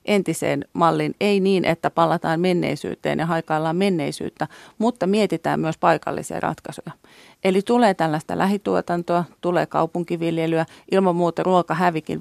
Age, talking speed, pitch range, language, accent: 30-49, 120 wpm, 160-185 Hz, Finnish, native